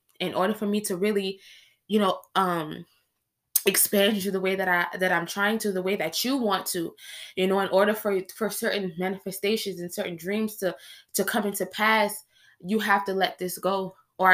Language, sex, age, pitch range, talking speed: English, female, 20-39, 190-235 Hz, 200 wpm